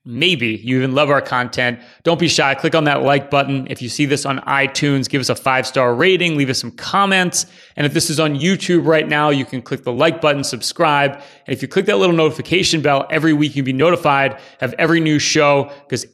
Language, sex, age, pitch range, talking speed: English, male, 30-49, 125-155 Hz, 235 wpm